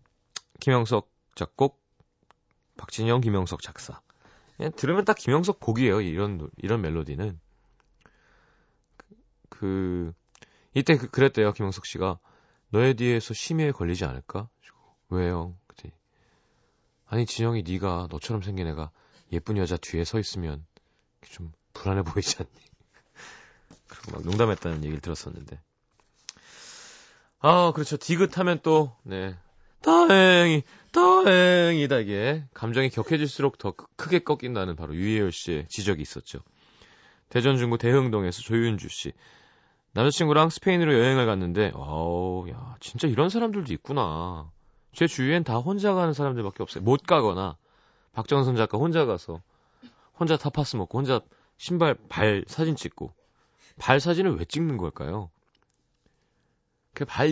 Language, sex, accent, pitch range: Korean, male, native, 90-150 Hz